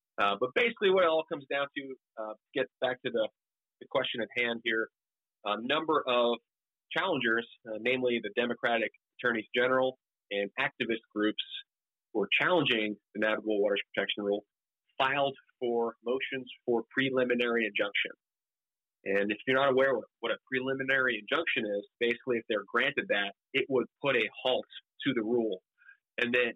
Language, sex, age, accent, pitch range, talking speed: English, male, 30-49, American, 110-130 Hz, 165 wpm